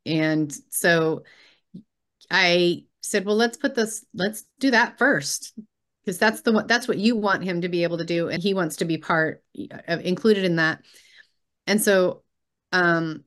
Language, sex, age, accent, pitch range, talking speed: English, female, 30-49, American, 165-195 Hz, 180 wpm